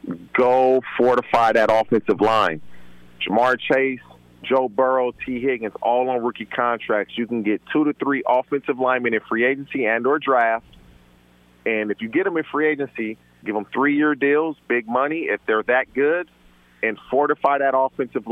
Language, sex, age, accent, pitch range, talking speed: English, male, 40-59, American, 105-140 Hz, 165 wpm